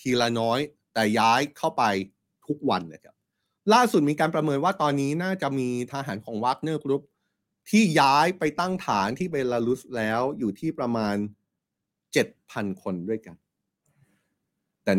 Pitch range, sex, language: 115-155 Hz, male, Thai